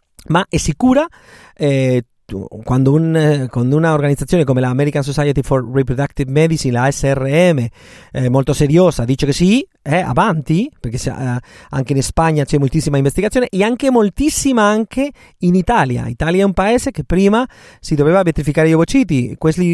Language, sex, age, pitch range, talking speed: Italian, male, 30-49, 130-180 Hz, 160 wpm